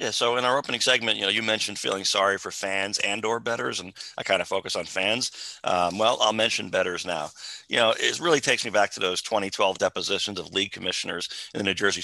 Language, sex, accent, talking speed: English, male, American, 240 wpm